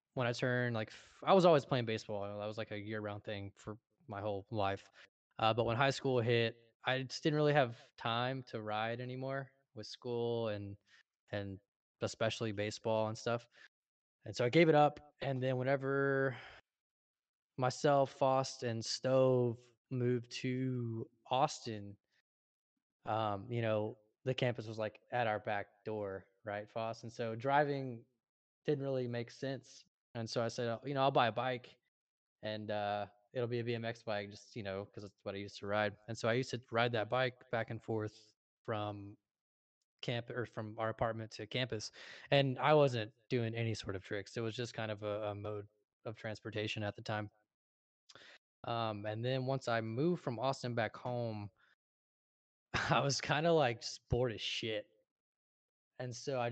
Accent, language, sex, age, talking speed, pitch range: American, English, male, 20-39, 175 wpm, 105-130 Hz